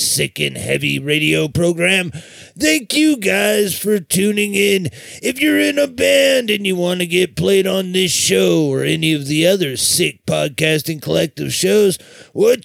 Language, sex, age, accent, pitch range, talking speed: English, male, 30-49, American, 155-200 Hz, 165 wpm